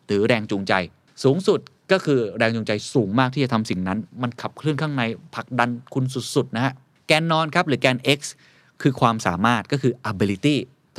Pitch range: 110-145 Hz